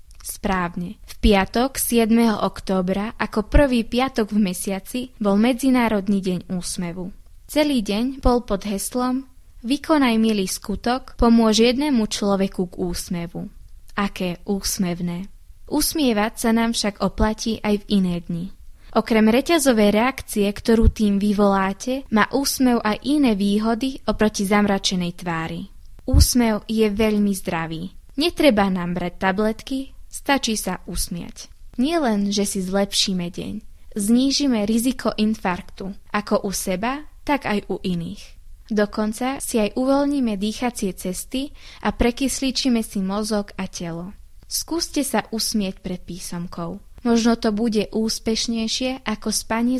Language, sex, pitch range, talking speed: Slovak, female, 195-240 Hz, 125 wpm